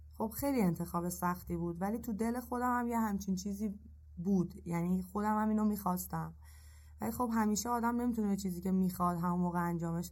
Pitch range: 160-215 Hz